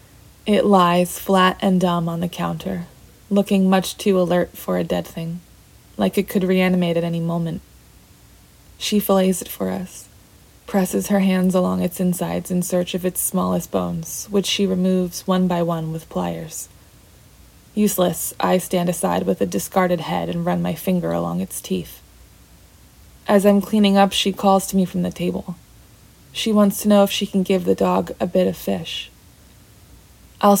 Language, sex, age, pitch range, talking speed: English, female, 20-39, 170-195 Hz, 175 wpm